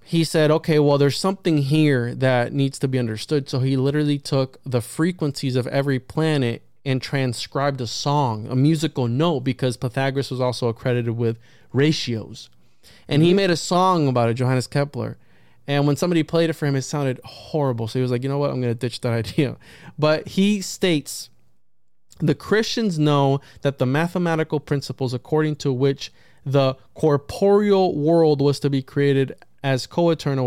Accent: American